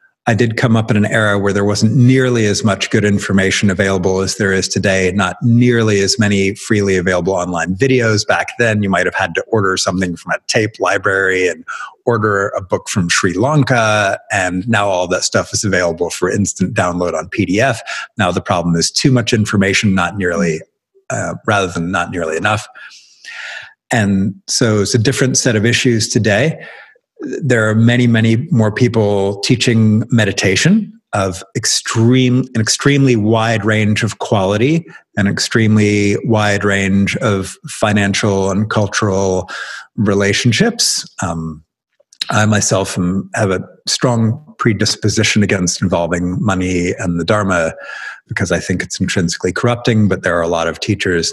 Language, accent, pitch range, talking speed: English, American, 95-120 Hz, 160 wpm